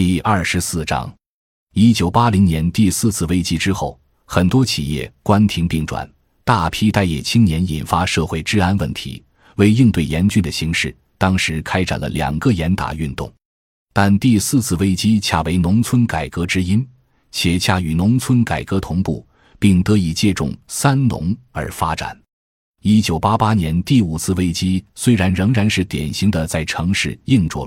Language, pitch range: Chinese, 80-110 Hz